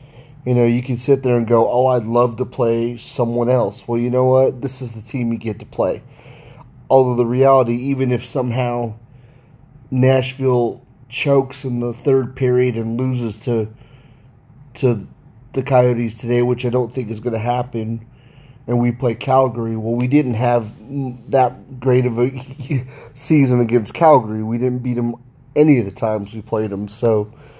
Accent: American